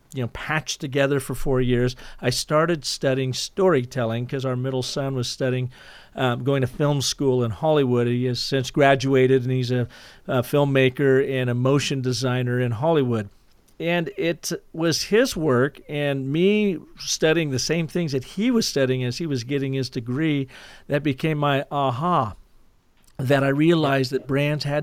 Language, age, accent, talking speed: English, 50-69, American, 170 wpm